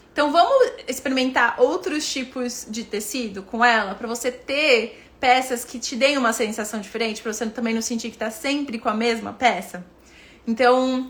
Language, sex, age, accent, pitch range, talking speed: Portuguese, female, 20-39, Brazilian, 230-280 Hz, 175 wpm